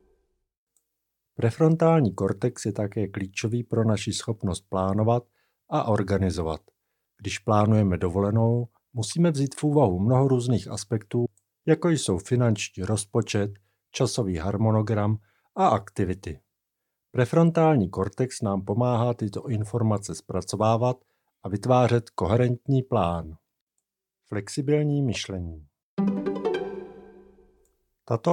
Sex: male